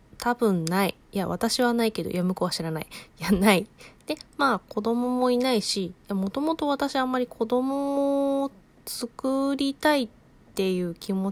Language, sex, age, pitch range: Japanese, female, 20-39, 185-255 Hz